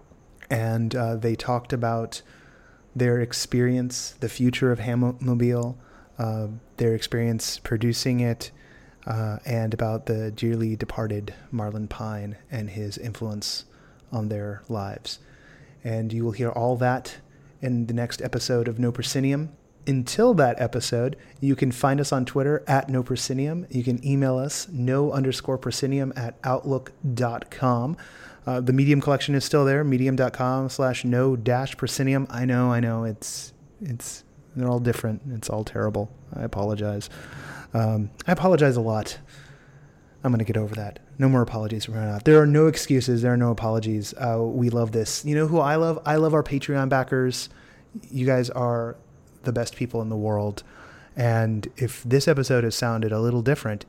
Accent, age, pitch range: American, 30-49, 115-135 Hz